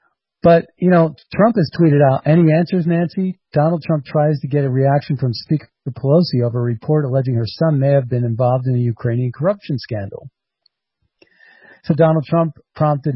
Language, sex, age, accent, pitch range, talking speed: English, male, 50-69, American, 130-175 Hz, 180 wpm